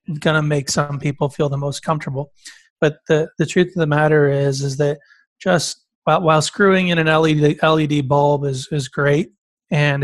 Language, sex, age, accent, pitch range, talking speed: English, male, 30-49, American, 140-155 Hz, 185 wpm